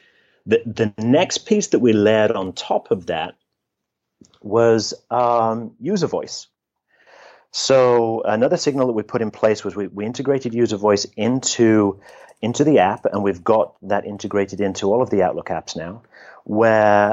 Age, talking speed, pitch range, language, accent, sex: 30-49, 160 wpm, 100-120 Hz, English, British, male